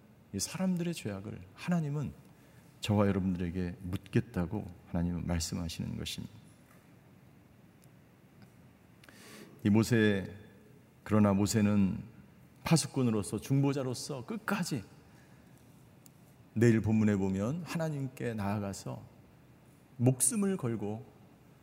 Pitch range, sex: 100-140 Hz, male